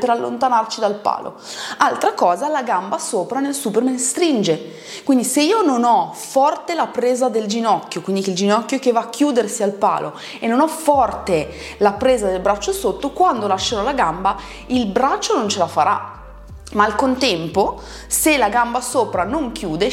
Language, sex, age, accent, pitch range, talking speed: Italian, female, 30-49, native, 205-285 Hz, 180 wpm